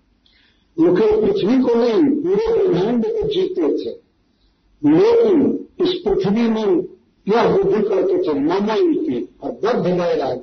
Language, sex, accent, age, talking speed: Hindi, male, native, 50-69, 140 wpm